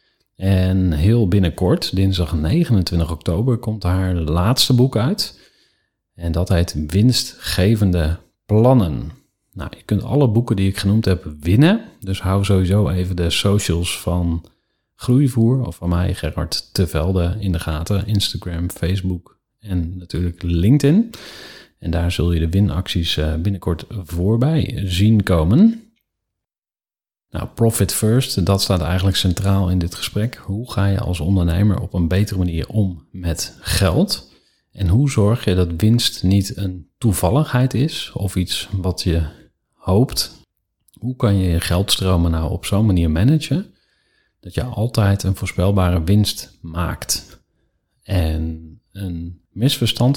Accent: Dutch